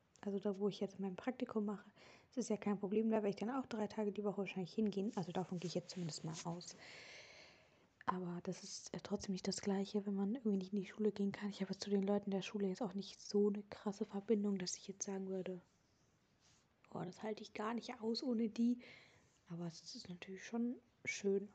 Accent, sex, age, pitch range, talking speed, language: German, female, 20-39, 195-220 Hz, 230 wpm, German